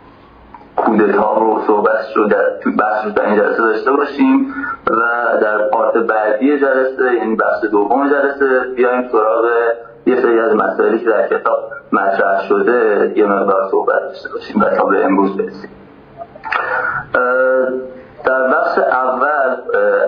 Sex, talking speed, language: male, 130 wpm, Persian